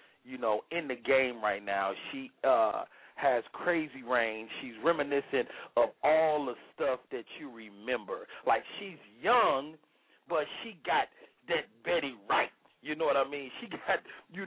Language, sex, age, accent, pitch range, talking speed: English, male, 40-59, American, 115-170 Hz, 160 wpm